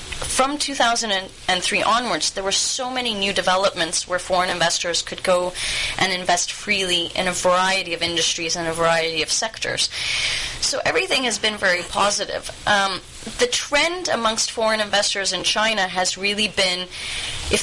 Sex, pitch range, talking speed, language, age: female, 175-220 Hz, 155 wpm, English, 20-39